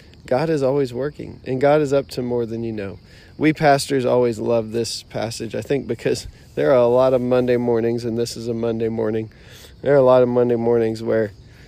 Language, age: English, 20-39